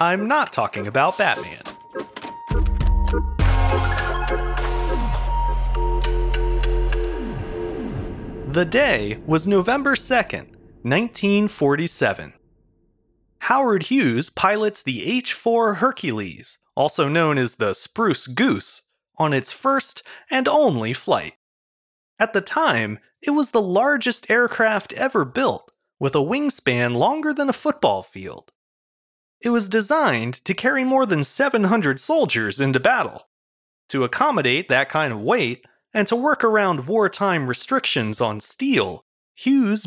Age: 30-49